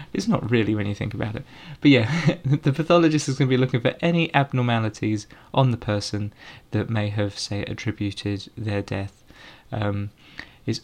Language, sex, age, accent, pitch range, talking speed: English, male, 20-39, British, 105-130 Hz, 175 wpm